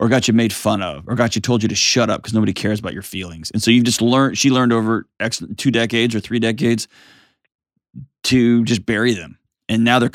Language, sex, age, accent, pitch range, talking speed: English, male, 20-39, American, 105-125 Hz, 235 wpm